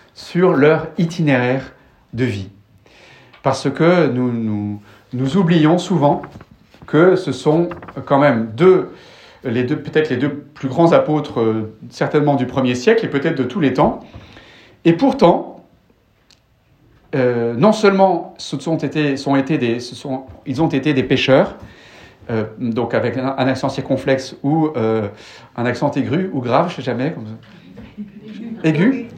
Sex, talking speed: male, 155 wpm